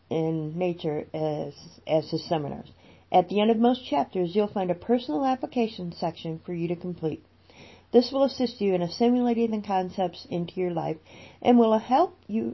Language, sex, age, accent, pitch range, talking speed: English, female, 40-59, American, 155-215 Hz, 175 wpm